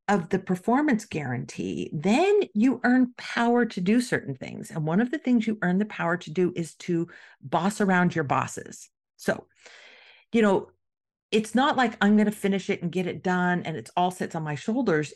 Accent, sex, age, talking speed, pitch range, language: American, female, 50-69, 200 wpm, 170-215 Hz, English